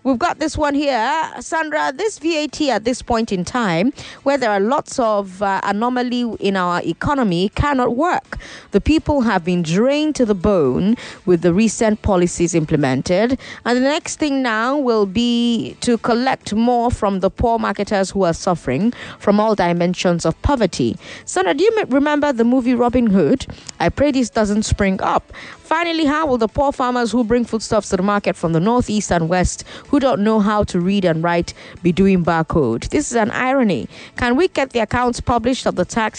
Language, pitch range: English, 180-250 Hz